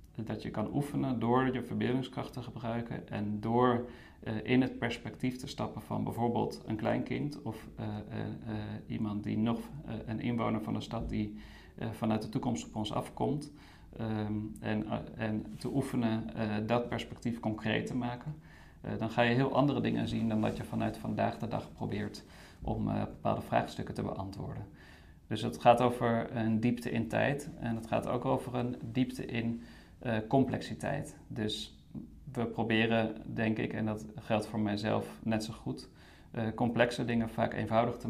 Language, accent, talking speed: Dutch, Dutch, 180 wpm